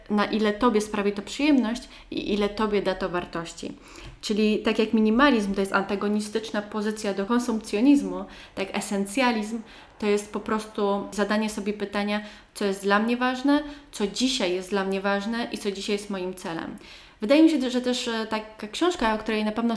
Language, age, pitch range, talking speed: Polish, 20-39, 200-245 Hz, 180 wpm